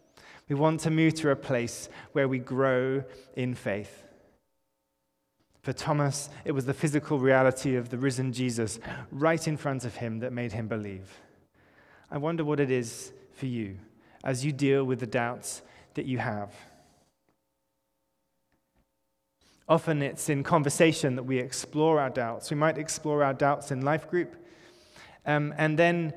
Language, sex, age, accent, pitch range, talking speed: English, male, 20-39, British, 125-155 Hz, 155 wpm